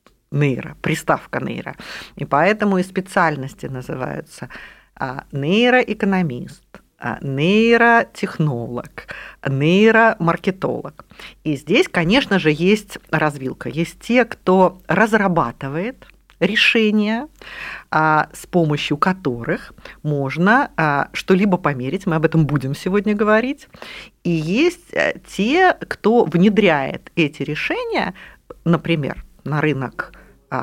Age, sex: 50-69, female